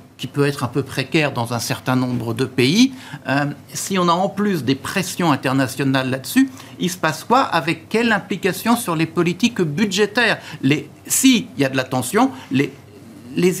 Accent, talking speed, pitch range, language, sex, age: French, 180 wpm, 140-195 Hz, French, male, 60-79